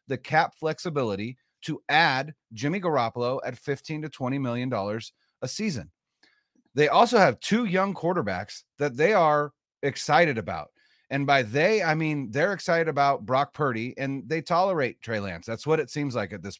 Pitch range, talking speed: 130-175 Hz, 170 wpm